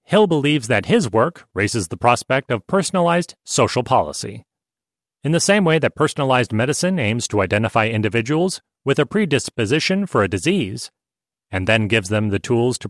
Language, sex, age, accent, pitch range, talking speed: English, male, 40-59, American, 115-155 Hz, 165 wpm